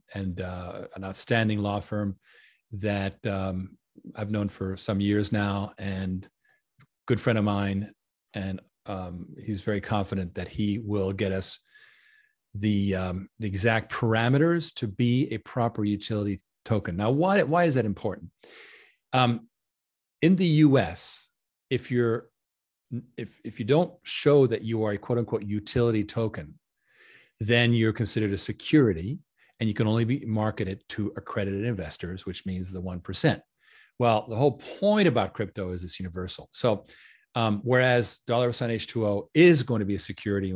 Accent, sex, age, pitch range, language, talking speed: American, male, 40-59, 100-125 Hz, English, 155 wpm